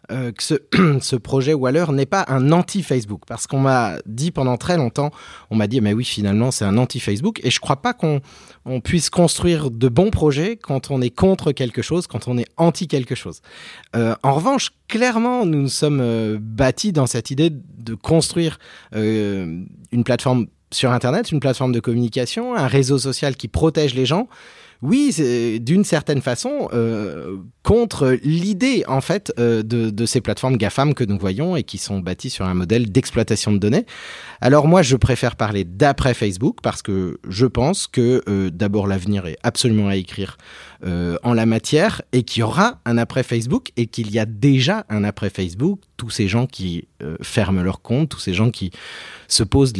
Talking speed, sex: 195 wpm, male